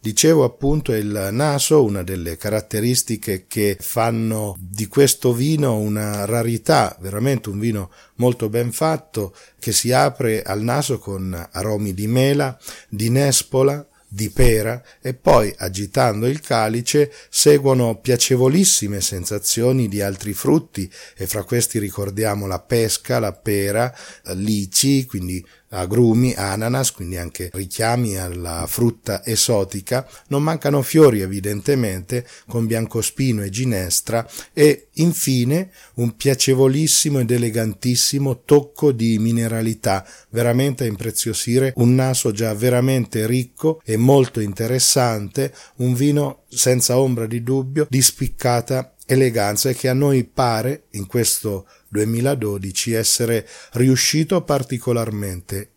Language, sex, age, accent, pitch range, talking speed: Italian, male, 40-59, native, 105-130 Hz, 120 wpm